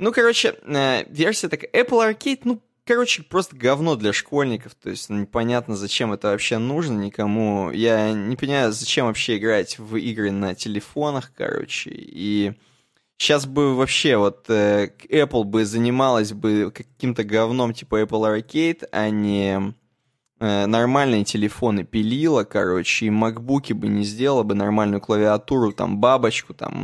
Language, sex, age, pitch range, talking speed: Russian, male, 20-39, 110-145 Hz, 150 wpm